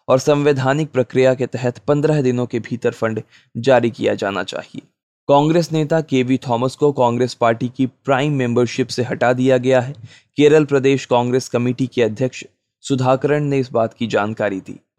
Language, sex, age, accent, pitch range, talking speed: Hindi, male, 20-39, native, 120-140 Hz, 110 wpm